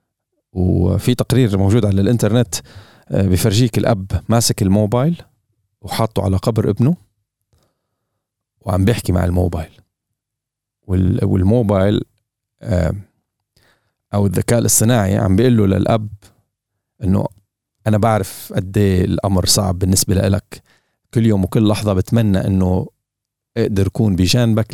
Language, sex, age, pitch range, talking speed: Arabic, male, 40-59, 95-115 Hz, 100 wpm